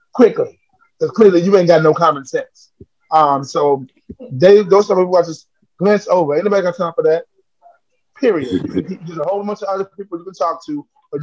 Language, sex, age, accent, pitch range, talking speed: English, male, 20-39, American, 150-215 Hz, 215 wpm